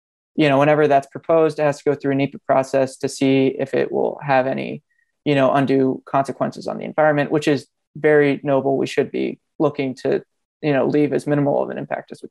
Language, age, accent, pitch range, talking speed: English, 20-39, American, 135-150 Hz, 225 wpm